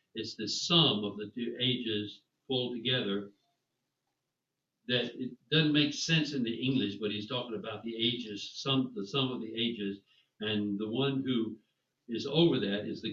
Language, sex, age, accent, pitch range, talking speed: English, male, 60-79, American, 105-130 Hz, 175 wpm